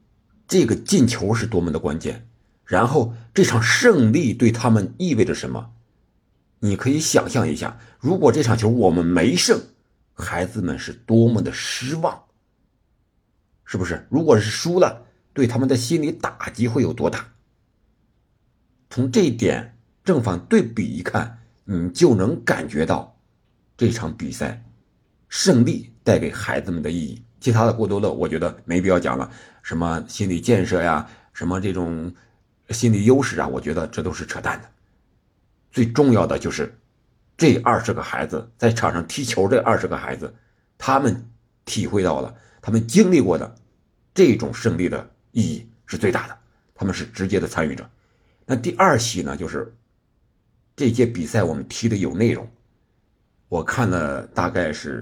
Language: Chinese